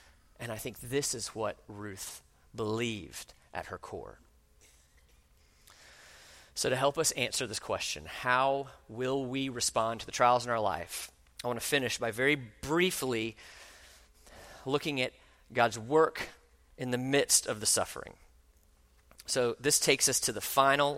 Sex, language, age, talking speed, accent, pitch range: male, English, 40-59, 150 wpm, American, 115-190 Hz